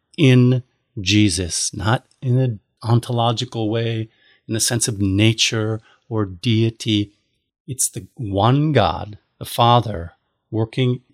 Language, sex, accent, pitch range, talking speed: English, male, American, 105-130 Hz, 115 wpm